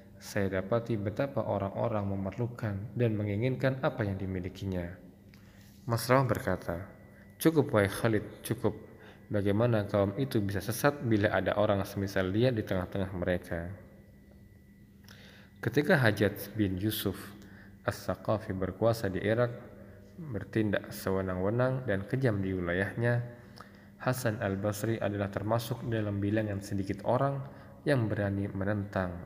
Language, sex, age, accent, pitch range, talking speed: Indonesian, male, 20-39, native, 100-115 Hz, 115 wpm